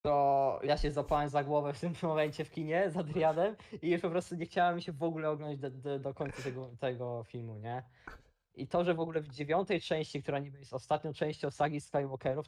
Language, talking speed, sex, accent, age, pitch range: Polish, 220 wpm, male, native, 20-39, 130-155 Hz